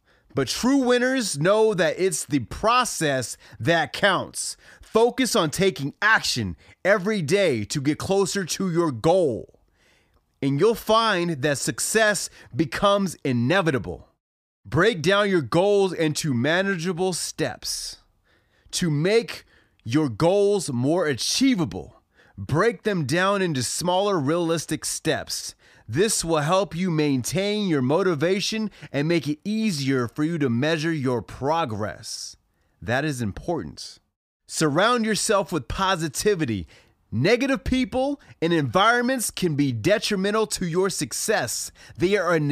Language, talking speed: English, 120 wpm